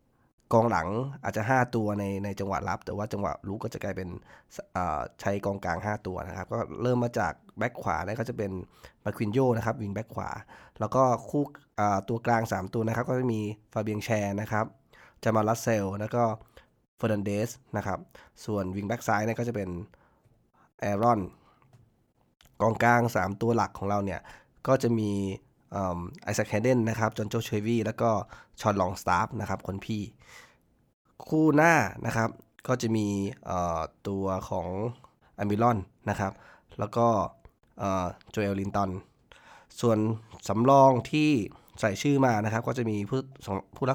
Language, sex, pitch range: Thai, male, 100-115 Hz